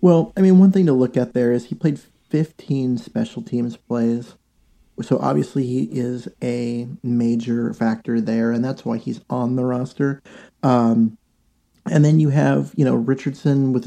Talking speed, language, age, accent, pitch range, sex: 175 wpm, English, 30-49, American, 120-145 Hz, male